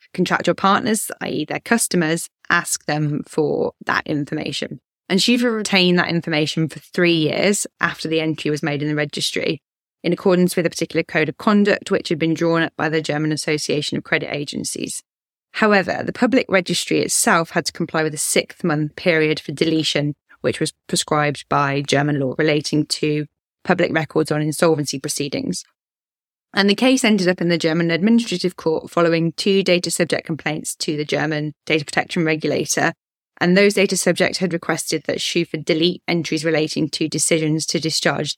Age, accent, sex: 10-29, British, female